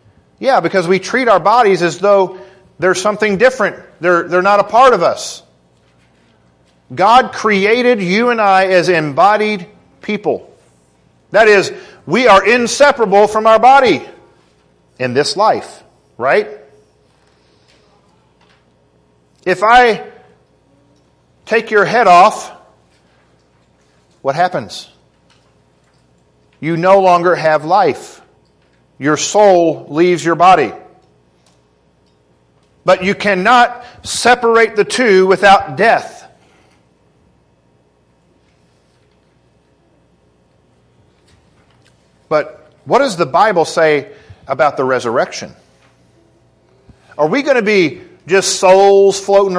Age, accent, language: 40-59, American, English